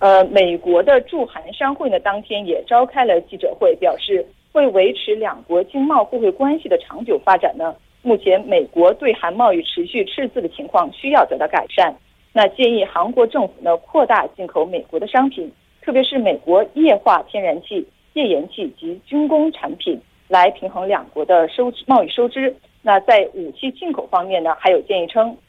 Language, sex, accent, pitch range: Korean, female, Chinese, 205-330 Hz